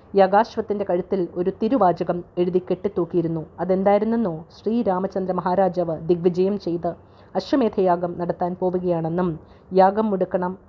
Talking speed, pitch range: 130 wpm, 175-195 Hz